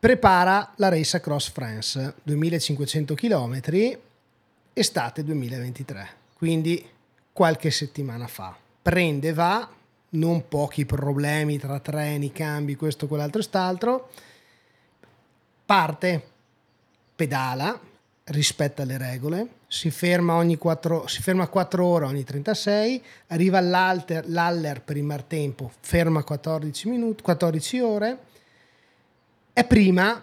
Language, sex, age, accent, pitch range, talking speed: Italian, male, 30-49, native, 145-195 Hz, 105 wpm